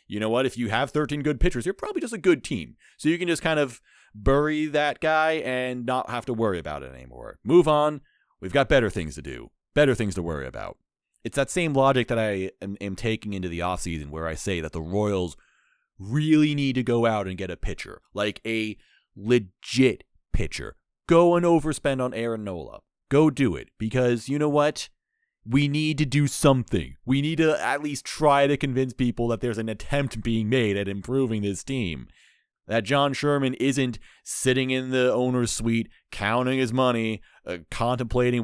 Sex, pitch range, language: male, 105-140 Hz, English